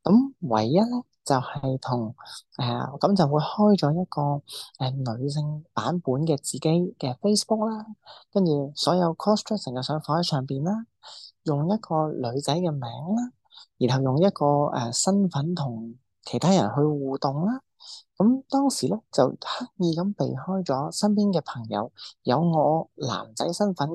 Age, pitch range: 30-49, 135-195 Hz